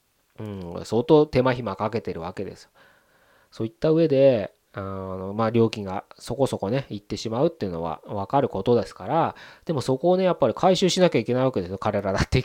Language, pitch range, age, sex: Japanese, 110-175 Hz, 20-39, male